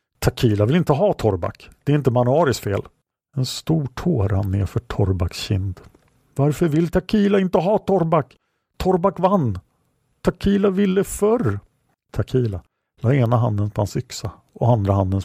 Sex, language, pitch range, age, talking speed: male, English, 105-140 Hz, 50-69, 140 wpm